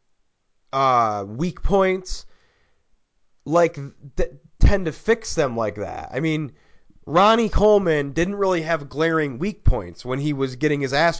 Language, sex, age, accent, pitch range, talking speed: English, male, 30-49, American, 140-185 Hz, 140 wpm